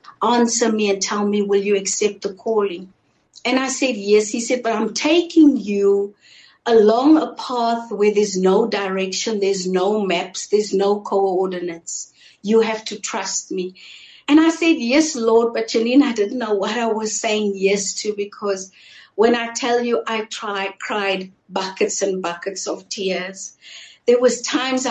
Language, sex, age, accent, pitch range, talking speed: English, female, 60-79, South African, 195-240 Hz, 165 wpm